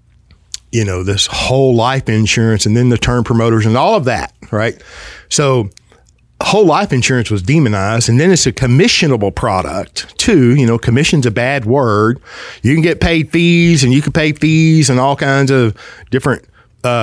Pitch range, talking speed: 115-135 Hz, 180 wpm